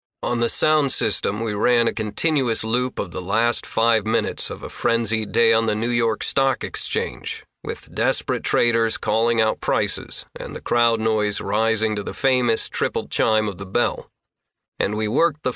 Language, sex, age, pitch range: English, male, 40-59, 110-130 Hz